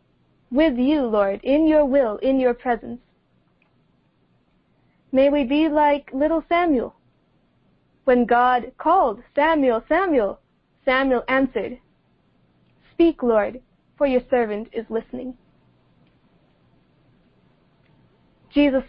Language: English